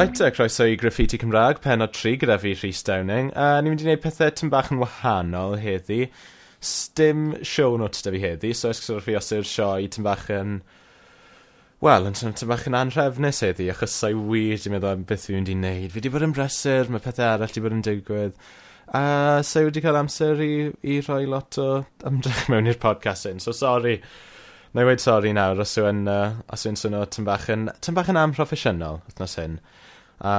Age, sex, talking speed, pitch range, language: 20-39, male, 200 wpm, 100-135 Hz, English